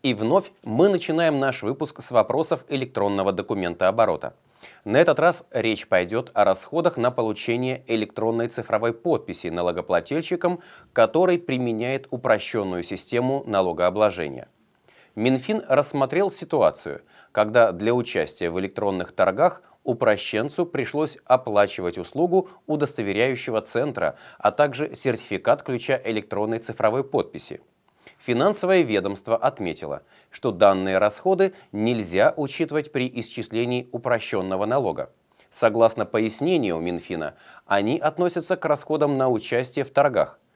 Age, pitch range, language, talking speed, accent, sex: 30-49, 105-150 Hz, Russian, 110 wpm, native, male